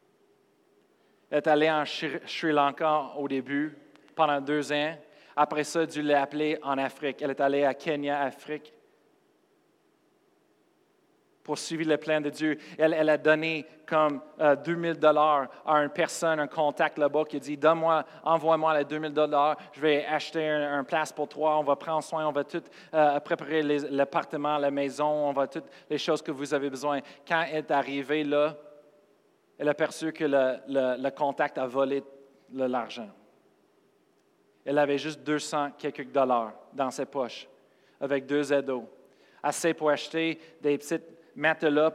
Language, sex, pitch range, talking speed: French, male, 140-155 Hz, 165 wpm